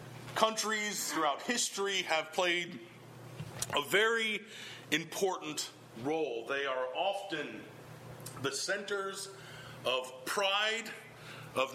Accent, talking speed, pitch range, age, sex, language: American, 85 wpm, 135-205 Hz, 40-59, male, English